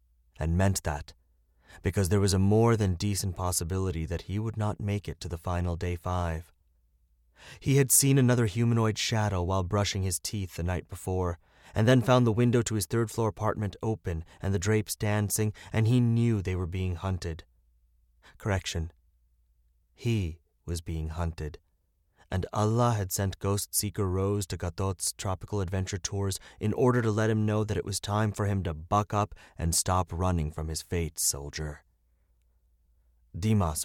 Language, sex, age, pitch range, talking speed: English, male, 30-49, 80-105 Hz, 170 wpm